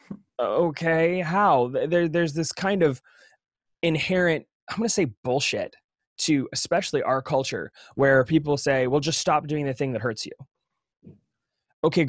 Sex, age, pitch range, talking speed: male, 20-39, 125-160 Hz, 150 wpm